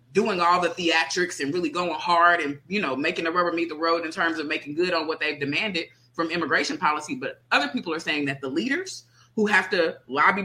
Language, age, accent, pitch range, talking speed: English, 20-39, American, 155-215 Hz, 235 wpm